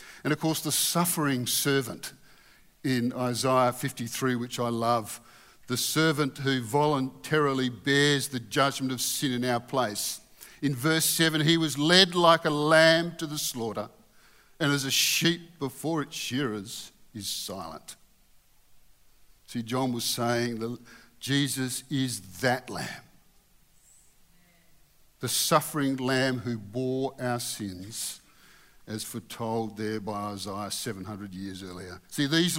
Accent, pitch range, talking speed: Australian, 115-160 Hz, 130 wpm